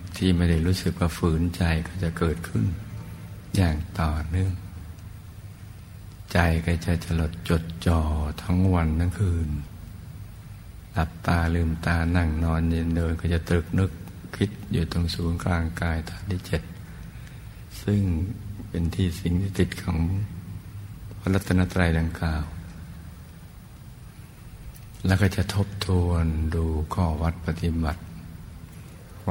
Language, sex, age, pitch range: Thai, male, 60-79, 85-95 Hz